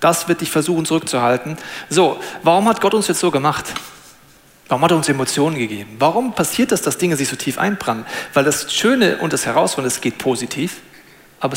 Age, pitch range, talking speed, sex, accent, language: 40-59, 160-240 Hz, 195 wpm, male, German, German